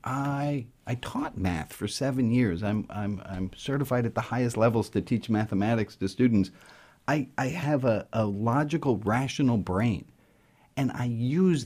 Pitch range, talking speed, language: 110-145 Hz, 160 wpm, English